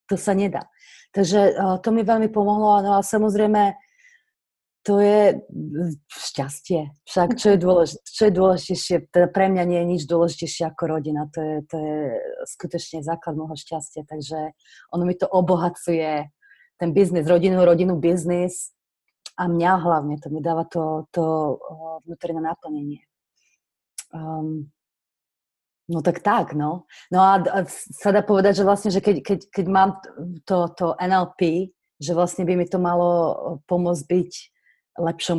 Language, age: Slovak, 30-49